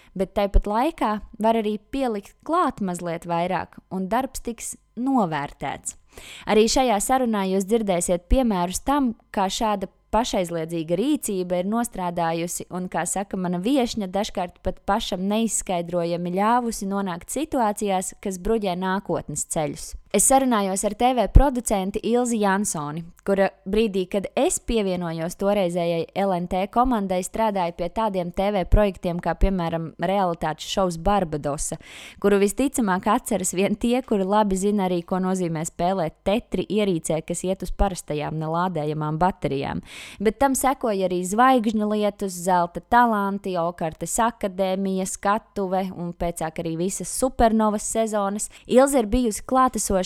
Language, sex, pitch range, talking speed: English, female, 180-220 Hz, 125 wpm